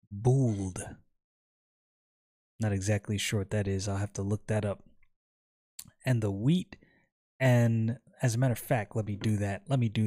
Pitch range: 100-120 Hz